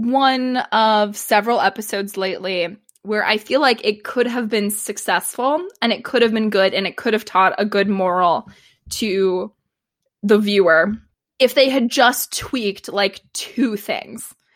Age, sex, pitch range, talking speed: 20-39, female, 205-255 Hz, 160 wpm